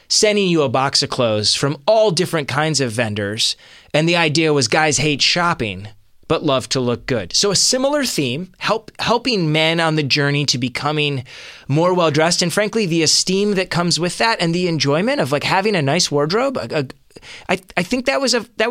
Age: 20-39